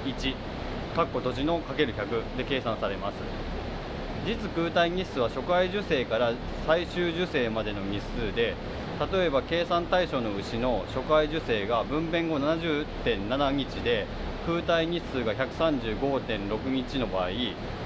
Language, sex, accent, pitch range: Japanese, male, native, 110-160 Hz